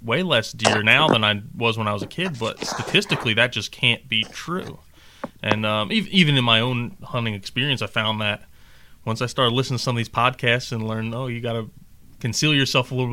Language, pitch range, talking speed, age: English, 110-125 Hz, 225 wpm, 30-49